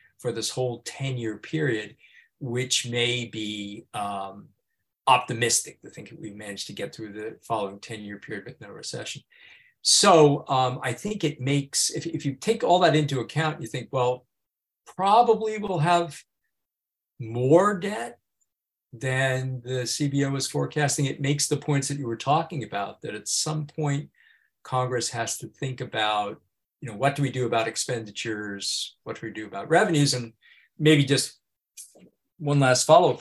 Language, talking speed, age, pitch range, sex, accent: English, 165 wpm, 50-69, 115-150 Hz, male, American